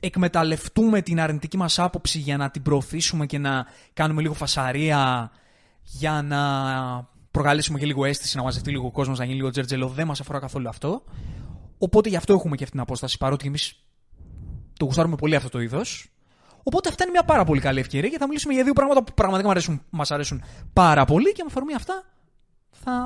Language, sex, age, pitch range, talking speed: Greek, male, 20-39, 135-220 Hz, 200 wpm